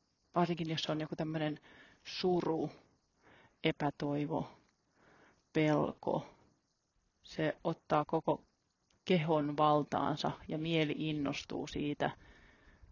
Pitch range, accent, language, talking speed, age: 105-165 Hz, native, Finnish, 80 wpm, 30-49